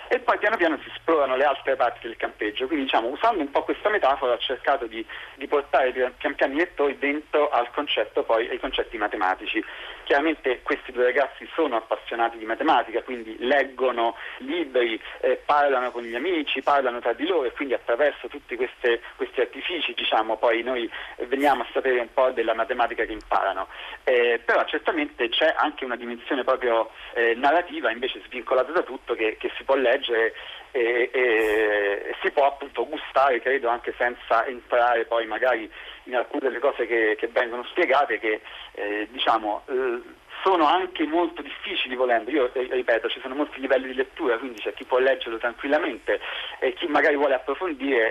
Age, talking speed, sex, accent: 40-59, 175 wpm, male, native